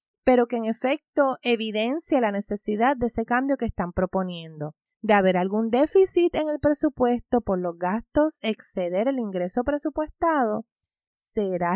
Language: Spanish